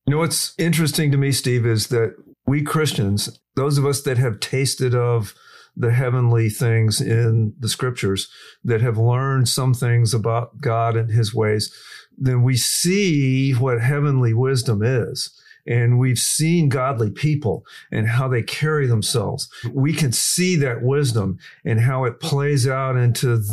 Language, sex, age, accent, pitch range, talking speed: English, male, 50-69, American, 115-145 Hz, 160 wpm